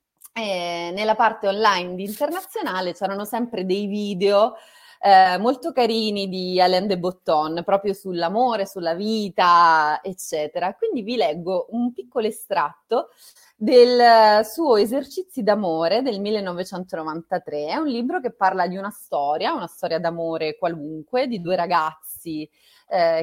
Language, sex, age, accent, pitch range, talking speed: Italian, female, 30-49, native, 170-240 Hz, 130 wpm